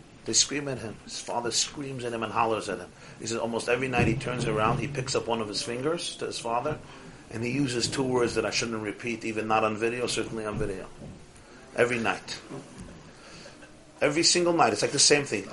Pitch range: 115-145 Hz